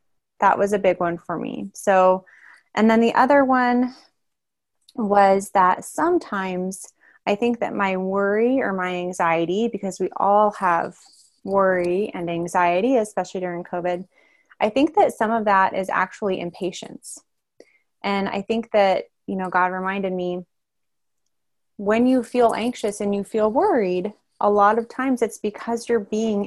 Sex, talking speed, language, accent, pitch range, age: female, 155 wpm, English, American, 185-230 Hz, 20-39